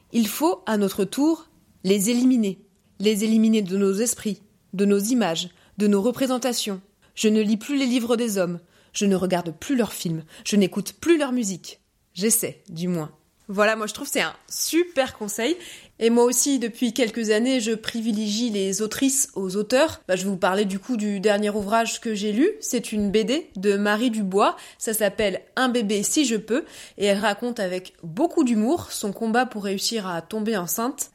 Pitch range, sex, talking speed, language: 200-245 Hz, female, 195 wpm, French